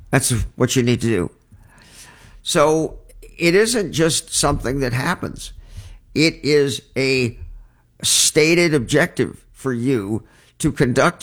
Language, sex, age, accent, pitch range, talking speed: English, male, 50-69, American, 105-140 Hz, 120 wpm